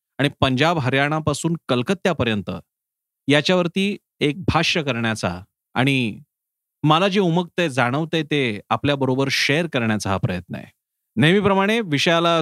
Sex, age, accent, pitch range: male, 40-59, native, 120-165 Hz